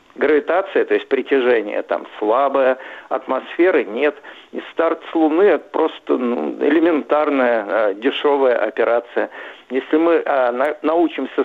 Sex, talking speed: male, 110 wpm